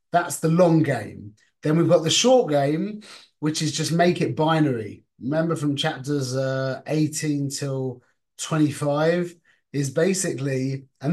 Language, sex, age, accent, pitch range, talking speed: English, male, 30-49, British, 125-160 Hz, 140 wpm